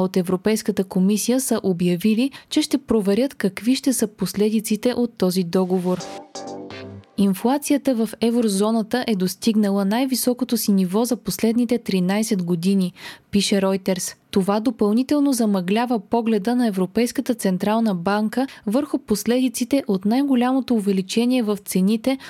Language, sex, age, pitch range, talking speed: Bulgarian, female, 20-39, 195-255 Hz, 120 wpm